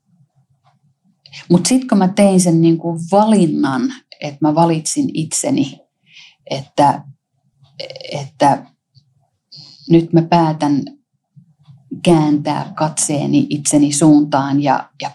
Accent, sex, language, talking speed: native, female, Finnish, 85 wpm